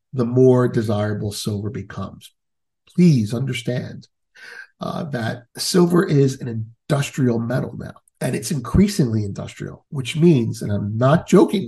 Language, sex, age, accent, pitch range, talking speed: English, male, 50-69, American, 110-145 Hz, 130 wpm